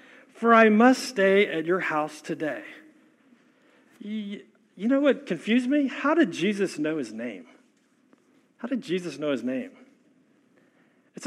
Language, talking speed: English, 140 wpm